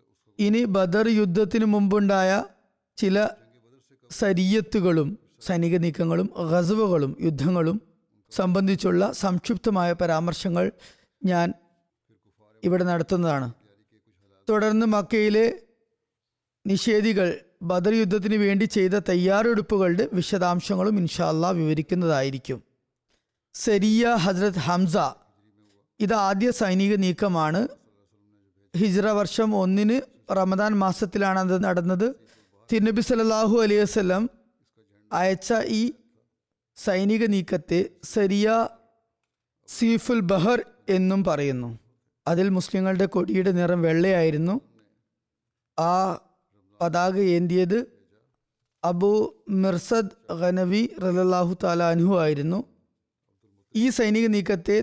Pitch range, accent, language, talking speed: 170-215 Hz, native, Malayalam, 75 wpm